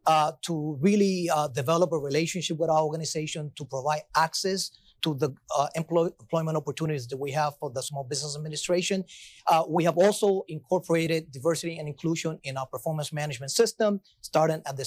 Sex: male